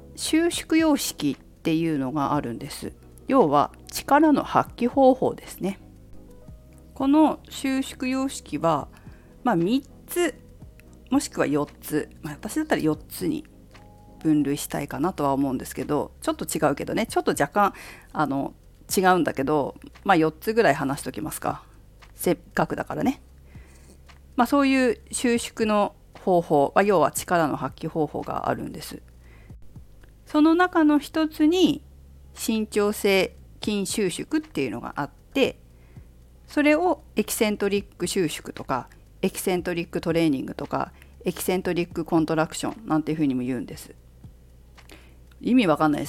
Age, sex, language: 40-59, female, Japanese